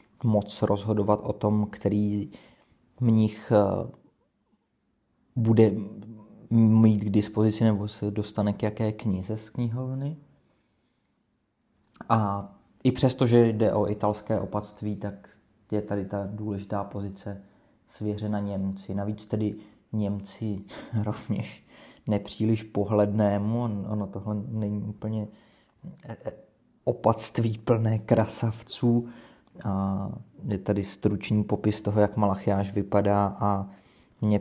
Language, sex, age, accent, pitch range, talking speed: Czech, male, 20-39, native, 100-110 Hz, 105 wpm